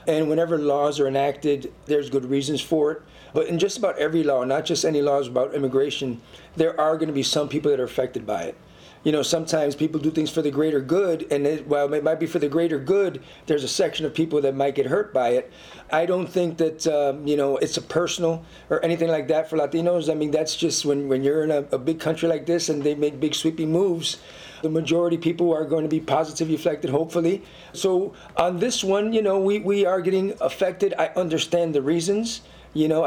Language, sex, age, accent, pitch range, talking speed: English, male, 40-59, American, 150-175 Hz, 230 wpm